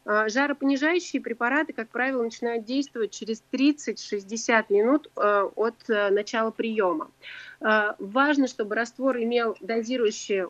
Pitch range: 220-260 Hz